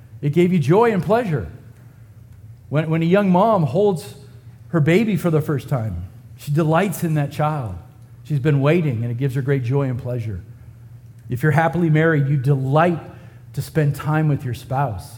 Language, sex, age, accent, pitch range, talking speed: English, male, 50-69, American, 120-165 Hz, 180 wpm